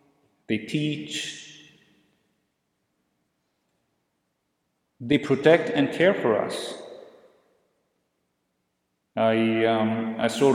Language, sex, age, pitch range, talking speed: English, male, 40-59, 115-140 Hz, 70 wpm